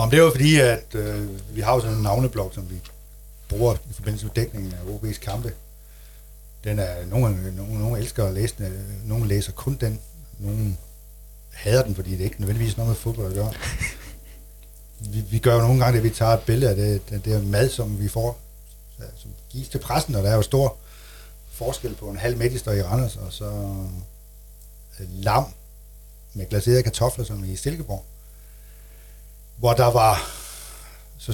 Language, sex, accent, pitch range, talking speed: Danish, male, native, 80-120 Hz, 175 wpm